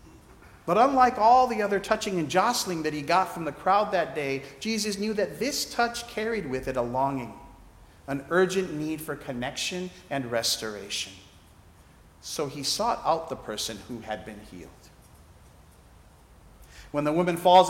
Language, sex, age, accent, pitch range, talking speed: English, male, 50-69, American, 110-185 Hz, 160 wpm